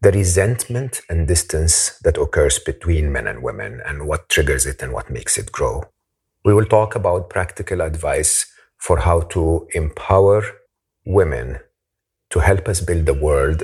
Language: English